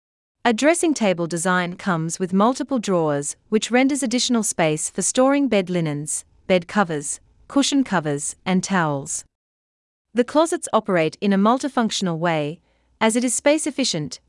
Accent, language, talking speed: Australian, English, 145 wpm